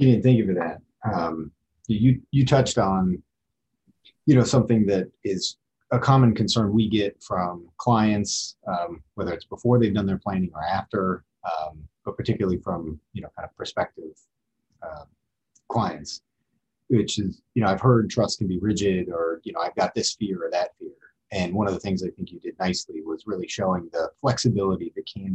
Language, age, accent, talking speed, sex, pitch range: English, 30-49, American, 190 wpm, male, 85-120 Hz